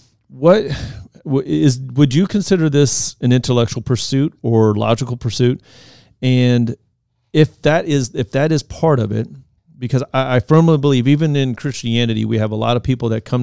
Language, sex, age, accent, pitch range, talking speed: English, male, 40-59, American, 115-135 Hz, 165 wpm